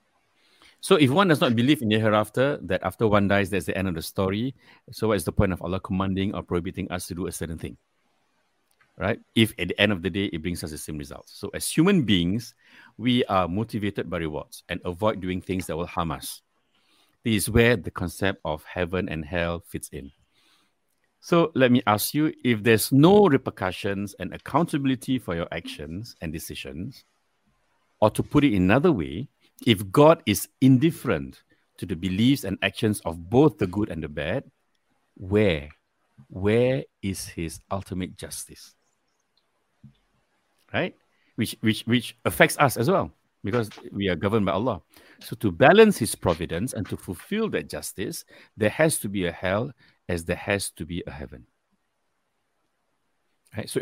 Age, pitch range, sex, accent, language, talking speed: 60-79, 90-115 Hz, male, Malaysian, English, 175 wpm